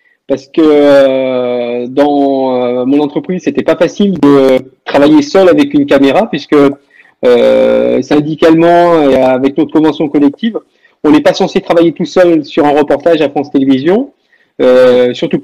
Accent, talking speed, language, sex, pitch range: French, 145 wpm, French, male, 140-195 Hz